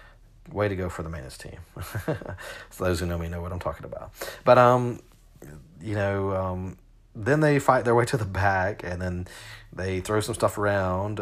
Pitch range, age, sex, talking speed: 90-115 Hz, 40-59, male, 200 wpm